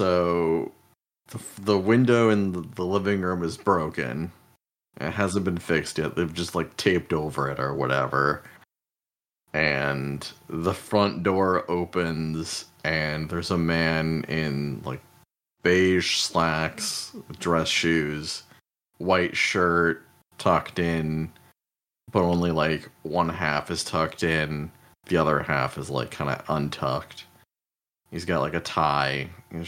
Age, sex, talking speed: 30-49, male, 125 wpm